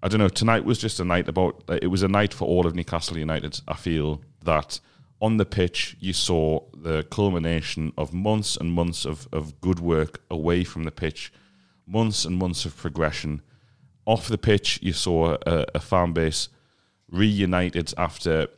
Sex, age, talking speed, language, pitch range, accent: male, 30-49, 185 wpm, English, 85-115 Hz, British